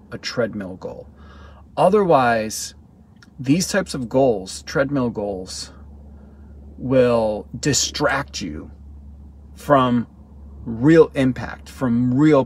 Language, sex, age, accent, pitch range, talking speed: English, male, 30-49, American, 90-140 Hz, 85 wpm